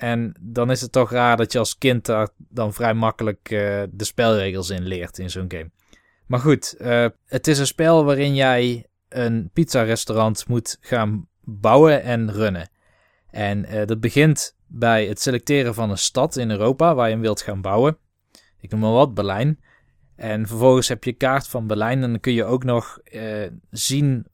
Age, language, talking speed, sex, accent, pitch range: 20-39, Dutch, 185 wpm, male, Dutch, 105-125 Hz